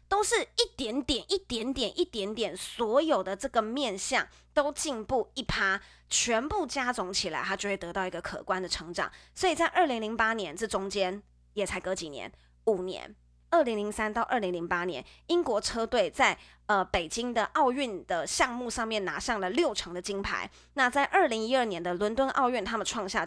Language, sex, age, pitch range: Chinese, female, 20-39, 190-275 Hz